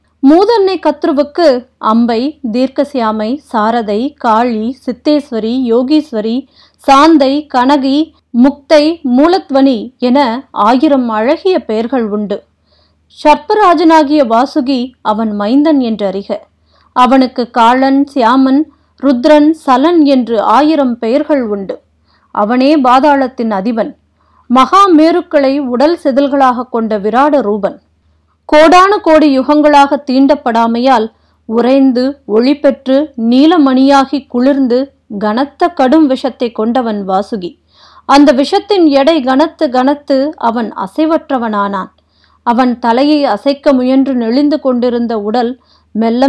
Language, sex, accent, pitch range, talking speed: Tamil, female, native, 235-290 Hz, 90 wpm